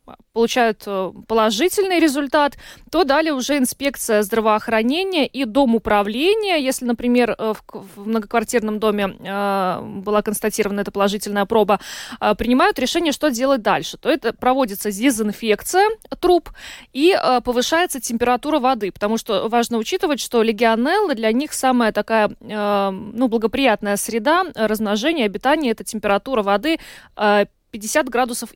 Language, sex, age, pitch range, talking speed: Russian, female, 20-39, 220-280 Hz, 120 wpm